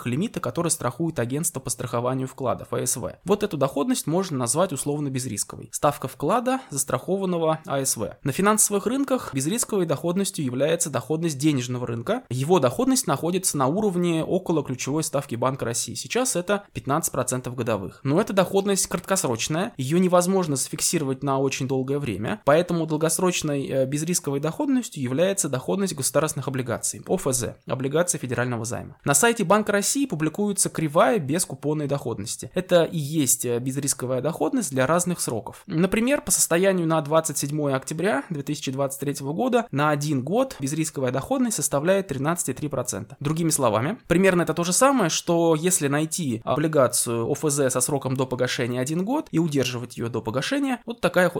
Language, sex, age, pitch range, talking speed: Russian, male, 20-39, 135-180 Hz, 140 wpm